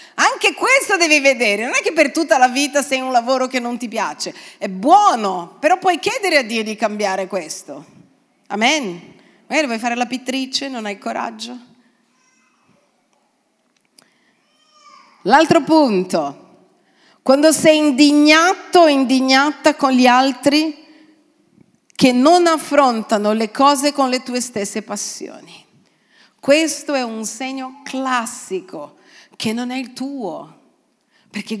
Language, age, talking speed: Italian, 40-59, 125 wpm